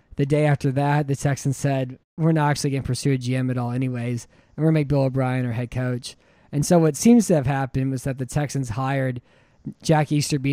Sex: male